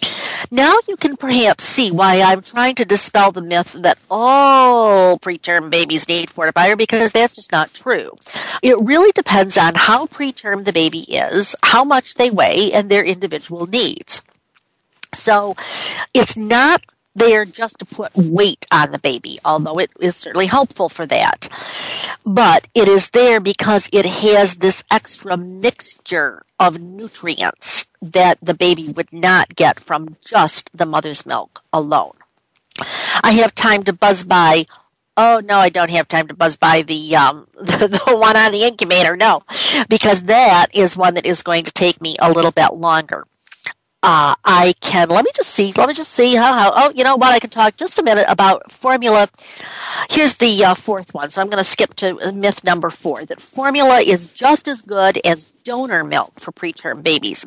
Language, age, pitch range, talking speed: English, 50-69, 180-245 Hz, 180 wpm